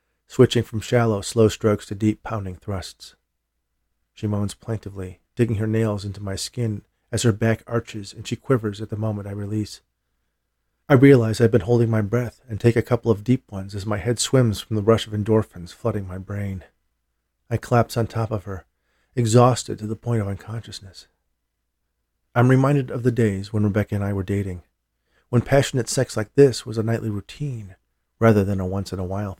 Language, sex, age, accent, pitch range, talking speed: English, male, 40-59, American, 90-115 Hz, 190 wpm